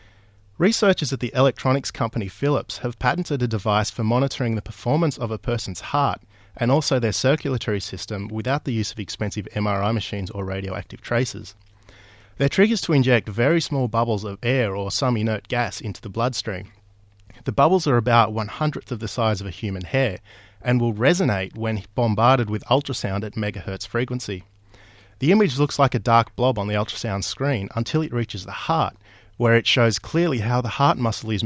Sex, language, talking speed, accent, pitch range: male, English, 185 wpm, Australian, 100-130 Hz